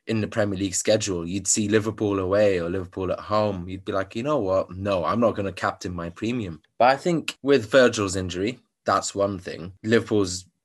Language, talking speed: English, 210 wpm